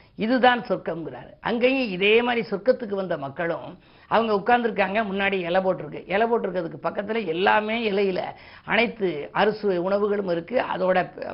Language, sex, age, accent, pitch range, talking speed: Tamil, female, 50-69, native, 180-230 Hz, 120 wpm